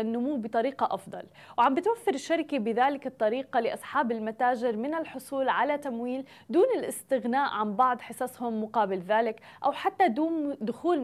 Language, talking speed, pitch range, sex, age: Arabic, 135 wpm, 230-285 Hz, female, 20-39